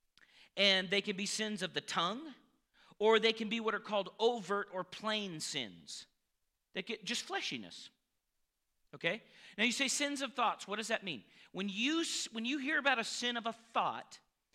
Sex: male